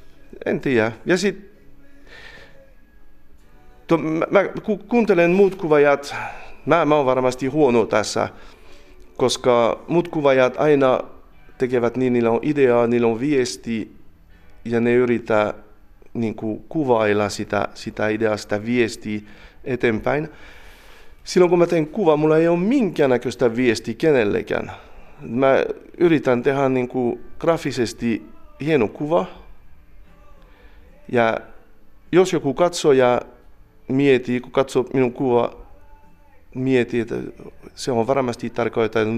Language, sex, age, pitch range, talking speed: Finnish, male, 40-59, 110-145 Hz, 105 wpm